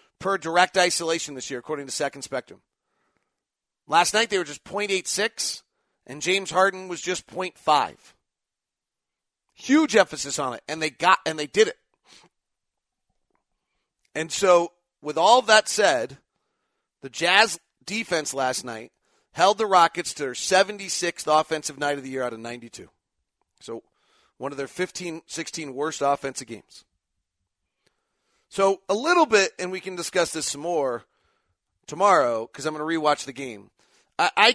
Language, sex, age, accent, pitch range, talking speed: English, male, 40-59, American, 140-190 Hz, 155 wpm